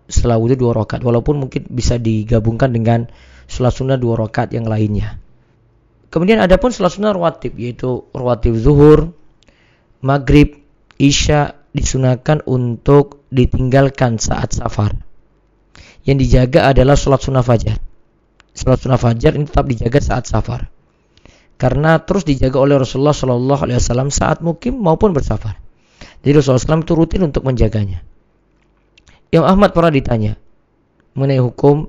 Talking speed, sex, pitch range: 130 wpm, male, 120-145 Hz